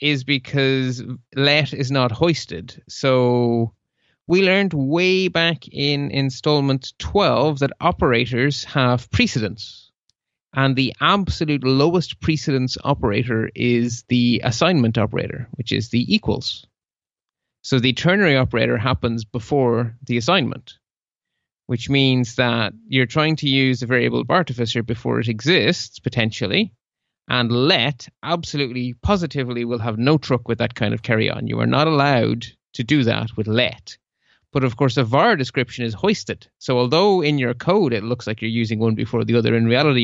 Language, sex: English, male